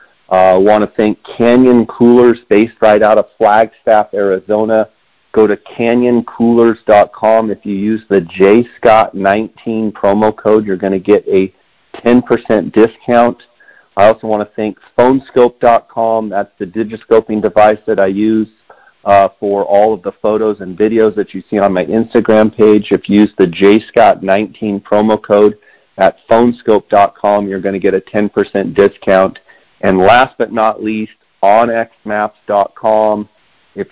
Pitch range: 100-110 Hz